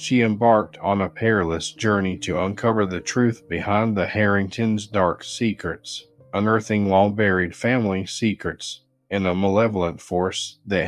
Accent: American